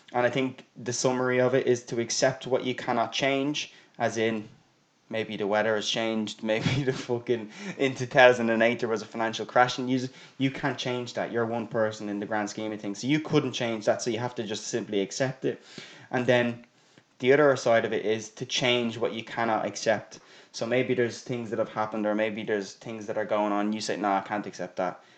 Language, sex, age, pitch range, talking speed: English, male, 10-29, 110-125 Hz, 235 wpm